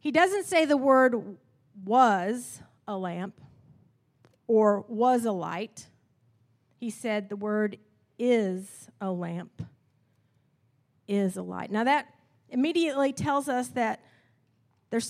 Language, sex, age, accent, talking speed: English, female, 40-59, American, 115 wpm